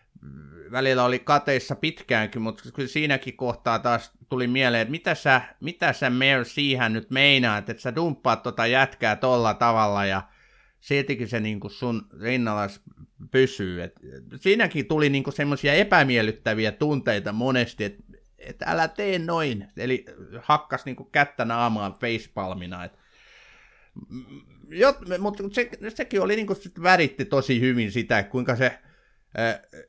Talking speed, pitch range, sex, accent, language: 135 wpm, 105-140 Hz, male, native, Finnish